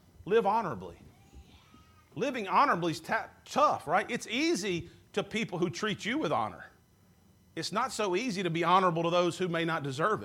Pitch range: 165-215 Hz